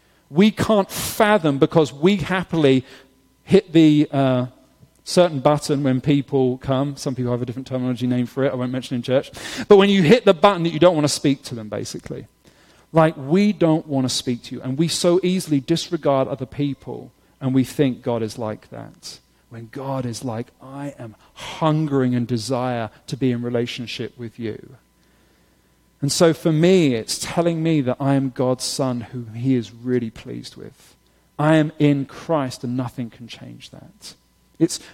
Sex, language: male, English